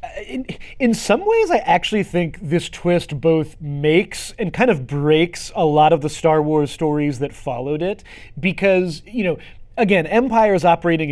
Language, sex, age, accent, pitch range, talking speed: English, male, 30-49, American, 150-185 Hz, 165 wpm